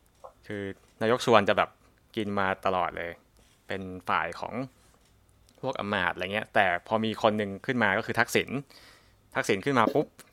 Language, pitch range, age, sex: Thai, 95-115 Hz, 20-39, male